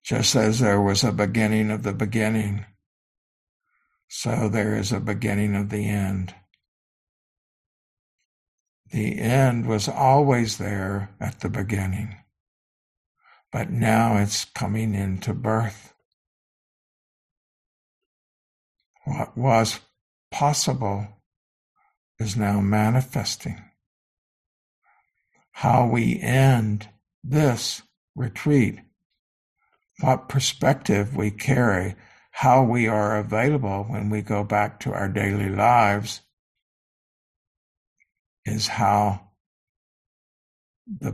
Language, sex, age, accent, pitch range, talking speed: English, male, 60-79, American, 100-120 Hz, 90 wpm